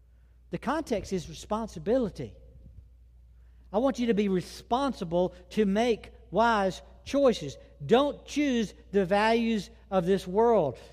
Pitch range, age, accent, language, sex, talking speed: 140-225 Hz, 60-79, American, English, male, 115 wpm